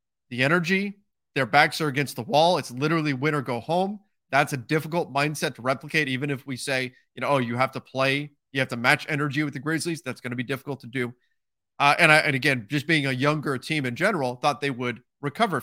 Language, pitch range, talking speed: English, 125-155 Hz, 235 wpm